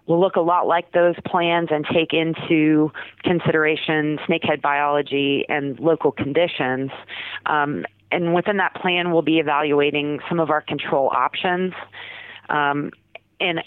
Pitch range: 145-175 Hz